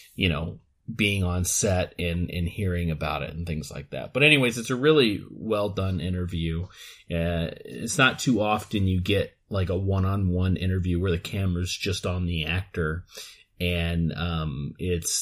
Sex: male